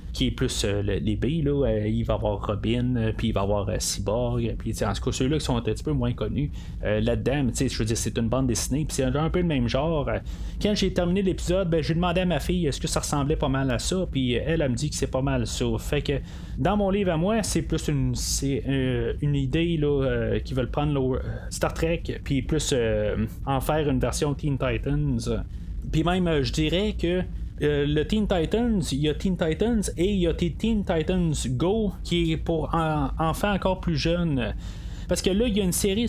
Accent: Canadian